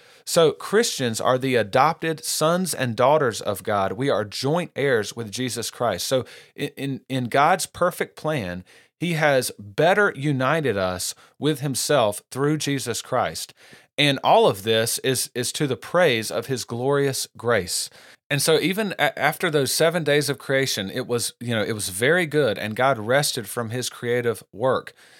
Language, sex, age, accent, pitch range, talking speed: English, male, 40-59, American, 115-150 Hz, 170 wpm